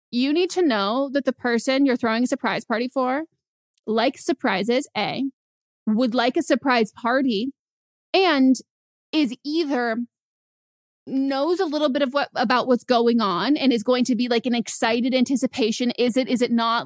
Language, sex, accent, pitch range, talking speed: English, female, American, 230-275 Hz, 170 wpm